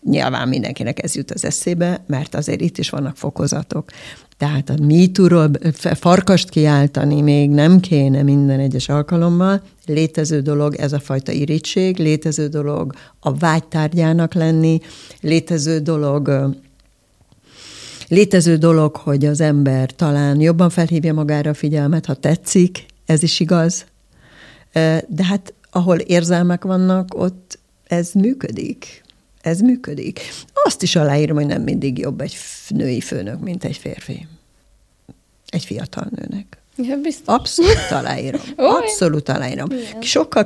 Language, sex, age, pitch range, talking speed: Hungarian, female, 60-79, 150-185 Hz, 125 wpm